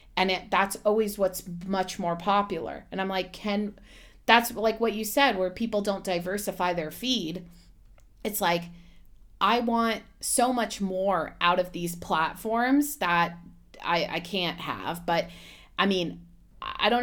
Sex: female